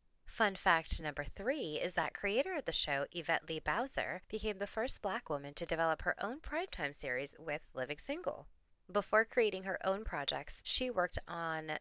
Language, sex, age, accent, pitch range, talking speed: English, female, 20-39, American, 155-225 Hz, 180 wpm